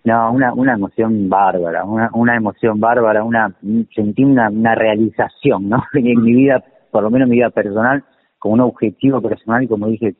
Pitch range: 100-120 Hz